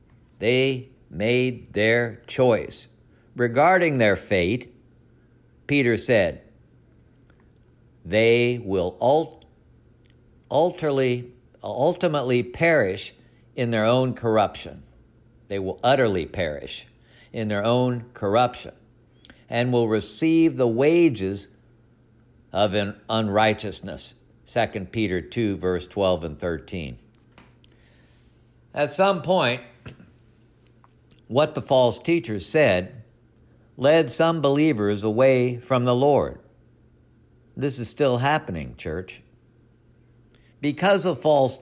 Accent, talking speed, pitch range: American, 90 wpm, 115-140 Hz